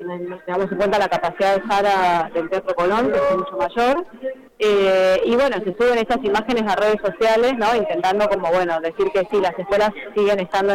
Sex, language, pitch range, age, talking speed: female, Spanish, 185-235 Hz, 20-39, 205 wpm